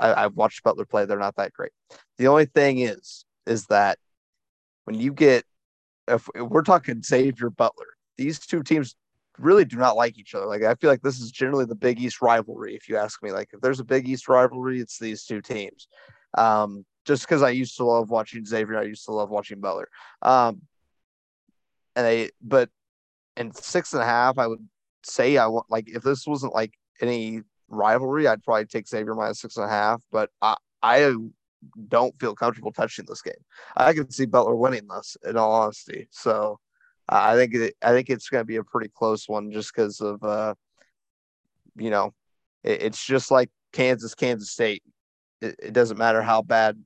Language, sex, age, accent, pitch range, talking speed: English, male, 30-49, American, 110-130 Hz, 200 wpm